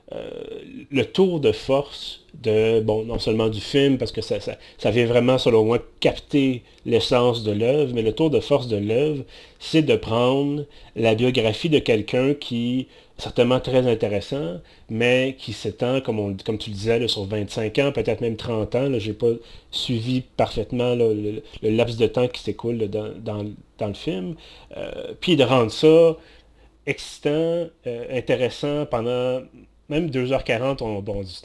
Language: French